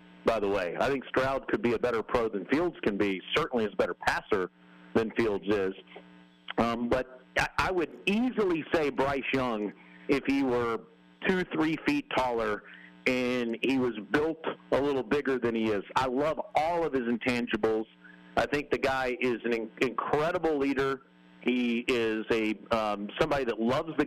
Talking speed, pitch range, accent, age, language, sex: 175 wpm, 110-135 Hz, American, 50-69, English, male